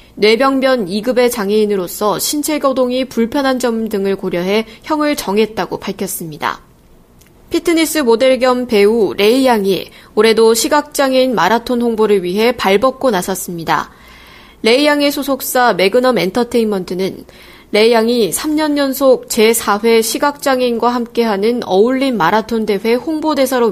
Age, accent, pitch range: 20-39, native, 205-260 Hz